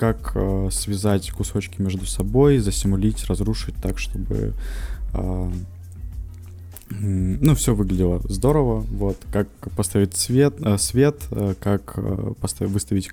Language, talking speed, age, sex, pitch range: Russian, 85 wpm, 20-39, male, 95-110 Hz